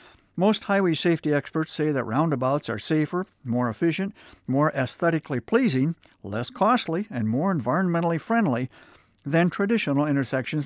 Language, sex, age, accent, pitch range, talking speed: English, male, 60-79, American, 135-185 Hz, 130 wpm